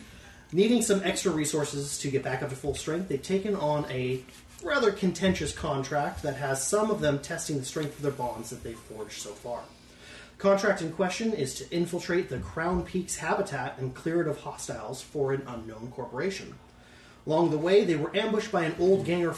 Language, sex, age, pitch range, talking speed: English, male, 30-49, 130-165 Hz, 200 wpm